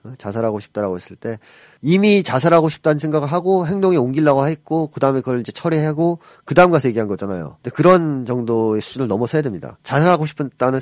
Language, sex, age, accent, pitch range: Korean, male, 40-59, native, 105-150 Hz